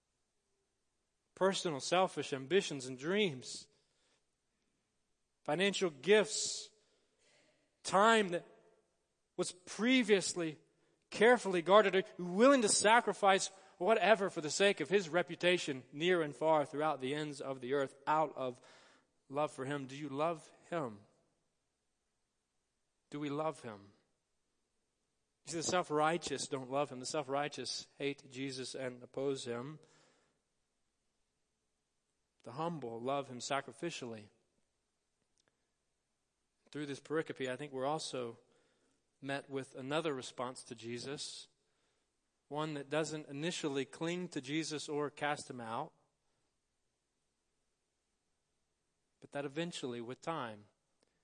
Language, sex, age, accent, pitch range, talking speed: English, male, 40-59, American, 130-170 Hz, 110 wpm